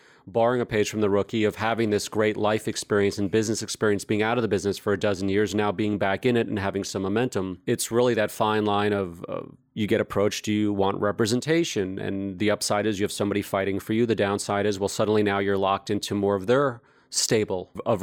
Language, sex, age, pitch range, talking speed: English, male, 30-49, 105-115 Hz, 235 wpm